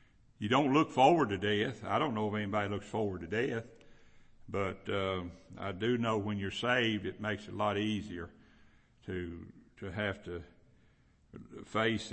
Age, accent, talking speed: 60-79, American, 170 wpm